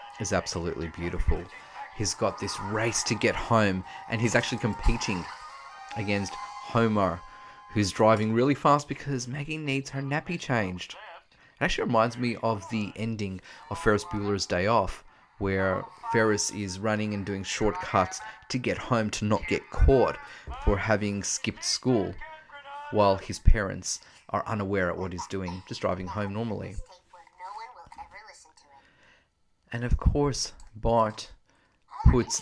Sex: male